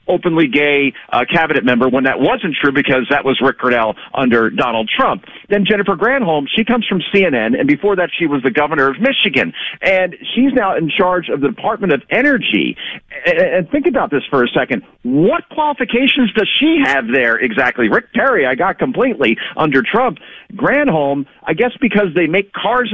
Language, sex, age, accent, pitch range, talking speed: English, male, 40-59, American, 155-230 Hz, 185 wpm